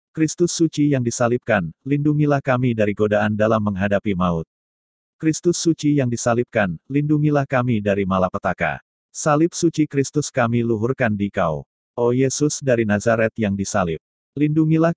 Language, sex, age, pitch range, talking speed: Indonesian, male, 40-59, 105-135 Hz, 130 wpm